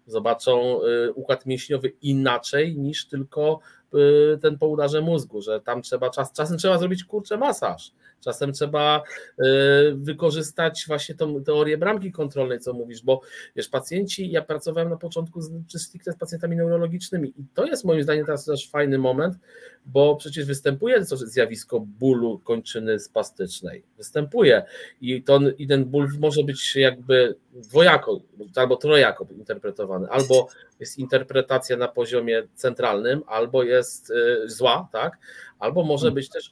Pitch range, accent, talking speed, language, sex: 125-170 Hz, native, 135 wpm, Polish, male